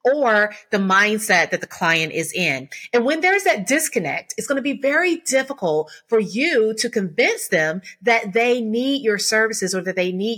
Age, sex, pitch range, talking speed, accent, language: 30-49, female, 195-280 Hz, 190 wpm, American, English